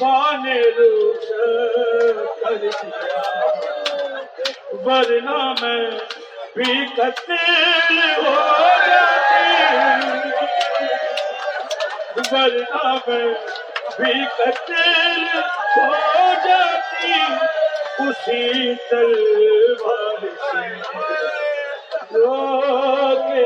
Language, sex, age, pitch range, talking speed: Urdu, male, 40-59, 235-345 Hz, 30 wpm